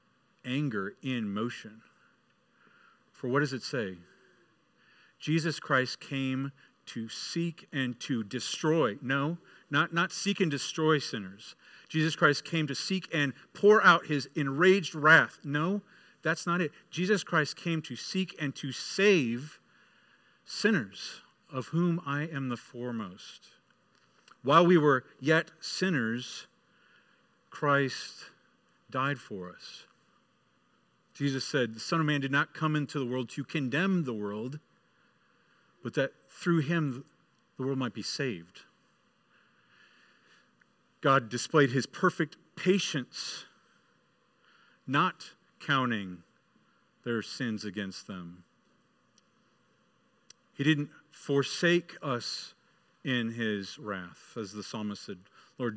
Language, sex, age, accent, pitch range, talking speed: English, male, 50-69, American, 125-170 Hz, 120 wpm